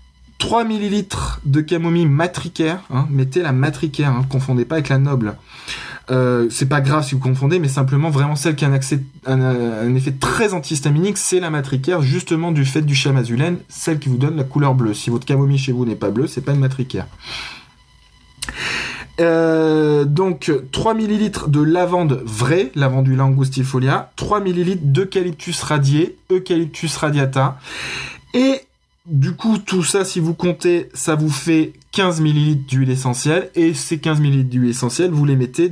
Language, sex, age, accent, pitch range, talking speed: French, male, 20-39, French, 130-170 Hz, 175 wpm